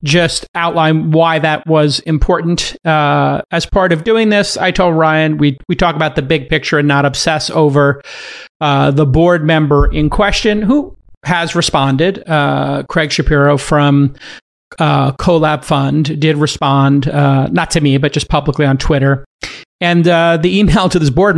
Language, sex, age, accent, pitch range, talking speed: English, male, 40-59, American, 150-180 Hz, 170 wpm